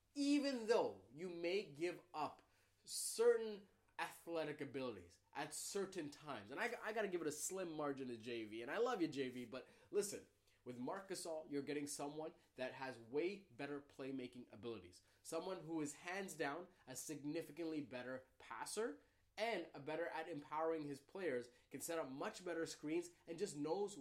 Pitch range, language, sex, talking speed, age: 135-180 Hz, English, male, 170 wpm, 20-39